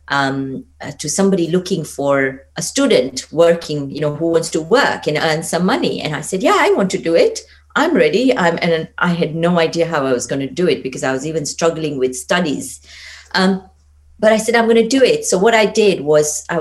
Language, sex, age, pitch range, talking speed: English, female, 50-69, 135-185 Hz, 235 wpm